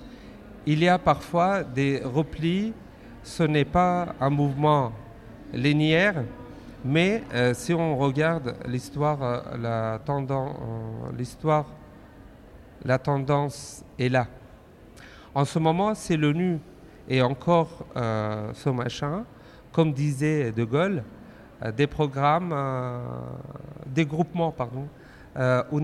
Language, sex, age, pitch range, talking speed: French, male, 40-59, 130-165 Hz, 105 wpm